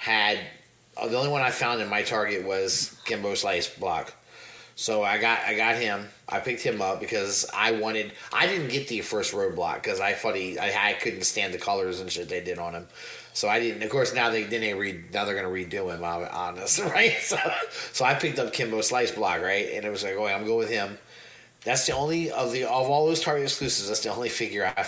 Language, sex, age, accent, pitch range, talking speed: English, male, 30-49, American, 105-155 Hz, 245 wpm